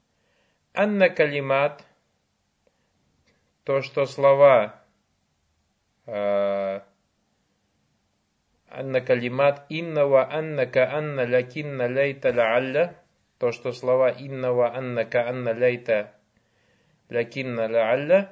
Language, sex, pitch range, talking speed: Russian, male, 120-160 Hz, 65 wpm